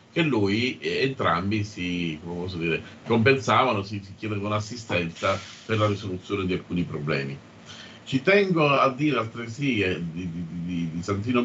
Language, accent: Italian, native